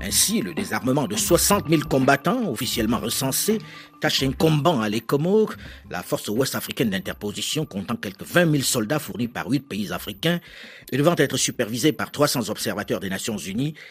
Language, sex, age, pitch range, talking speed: French, male, 50-69, 125-175 Hz, 165 wpm